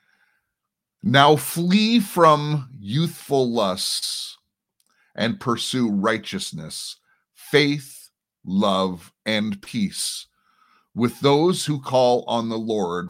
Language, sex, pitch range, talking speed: English, male, 105-160 Hz, 85 wpm